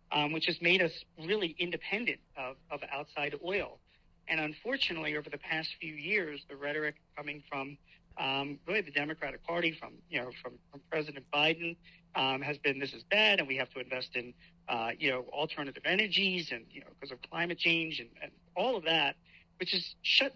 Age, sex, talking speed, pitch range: 50-69, male, 195 wpm, 145-180 Hz